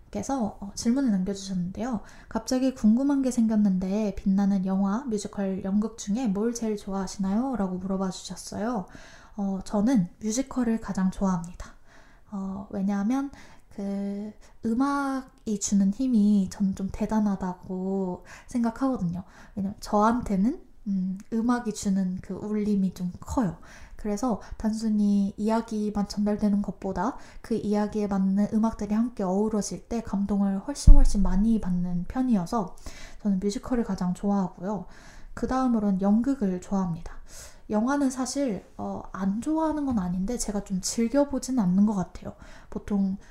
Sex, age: female, 20-39